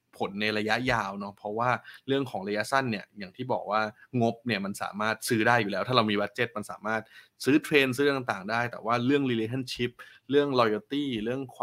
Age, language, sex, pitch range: 20-39, Thai, male, 105-125 Hz